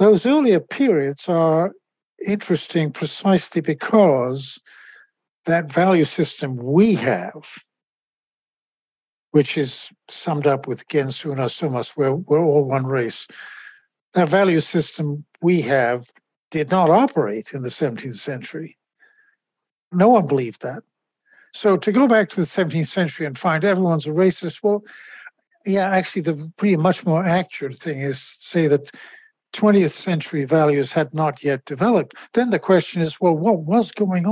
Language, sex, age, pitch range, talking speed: English, male, 60-79, 150-195 Hz, 140 wpm